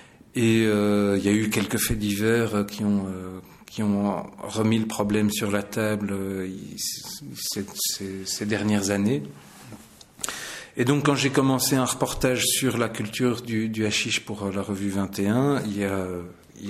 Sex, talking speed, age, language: male, 170 wpm, 40-59, French